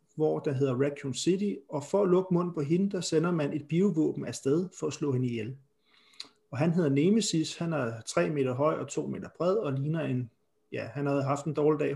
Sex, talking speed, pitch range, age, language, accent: male, 230 wpm, 135-160 Hz, 30-49, Danish, native